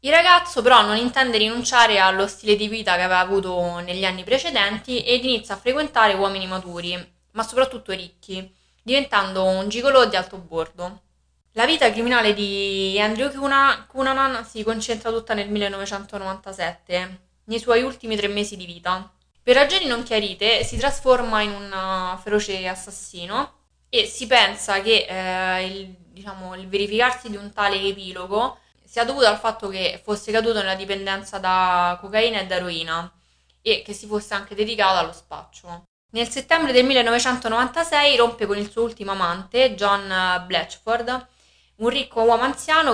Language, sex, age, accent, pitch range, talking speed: Italian, female, 20-39, native, 190-240 Hz, 155 wpm